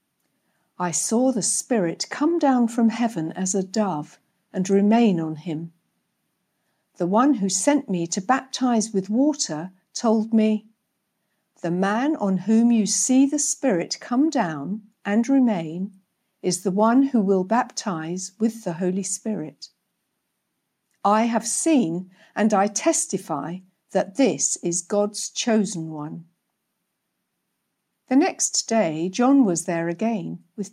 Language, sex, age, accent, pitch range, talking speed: English, female, 60-79, British, 185-235 Hz, 135 wpm